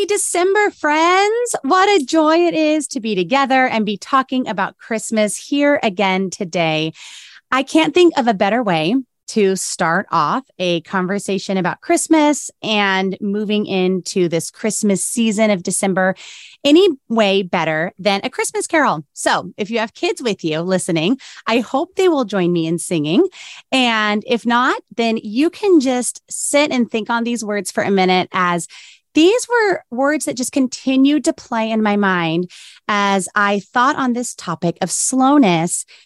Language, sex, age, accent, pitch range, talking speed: English, female, 30-49, American, 190-285 Hz, 165 wpm